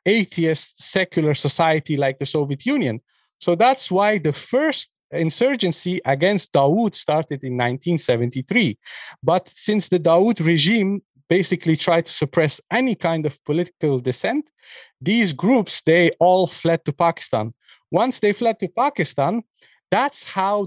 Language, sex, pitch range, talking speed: English, male, 145-190 Hz, 135 wpm